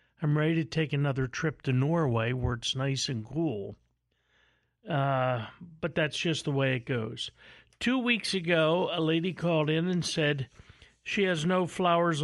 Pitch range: 130-170 Hz